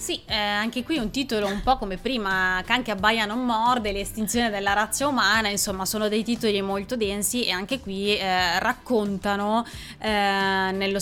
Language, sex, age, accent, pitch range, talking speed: Italian, female, 20-39, native, 185-220 Hz, 170 wpm